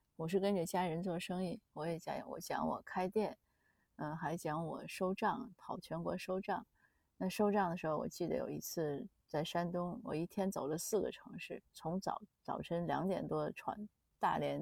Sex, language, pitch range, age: female, Chinese, 165-200 Hz, 30-49